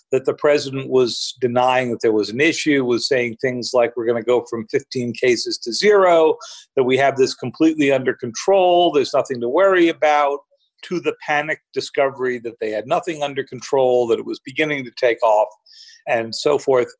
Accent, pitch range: American, 125-185 Hz